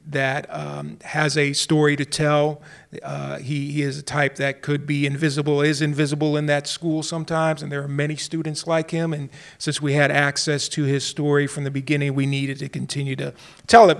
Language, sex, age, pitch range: English, male, 40-59, 140-160 Hz